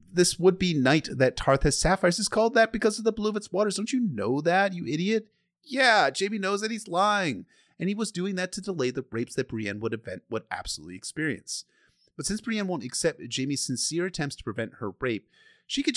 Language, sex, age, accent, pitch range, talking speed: English, male, 30-49, American, 110-175 Hz, 225 wpm